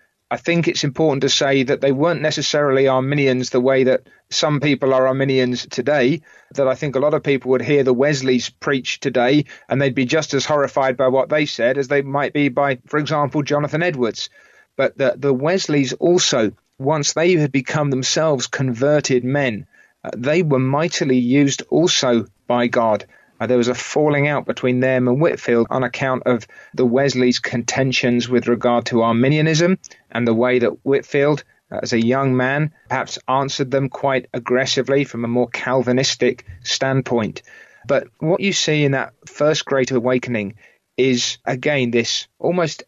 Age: 30-49